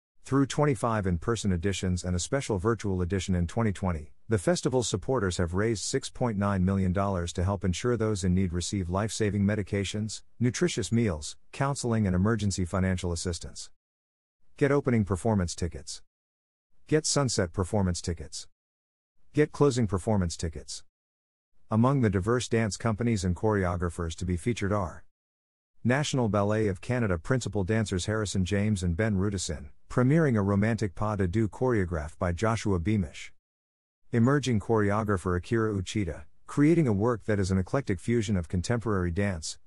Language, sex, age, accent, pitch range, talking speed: English, male, 50-69, American, 90-115 Hz, 145 wpm